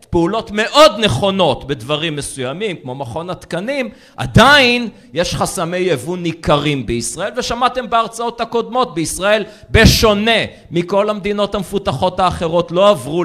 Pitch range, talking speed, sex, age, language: 140-195 Hz, 115 wpm, male, 40-59, Hebrew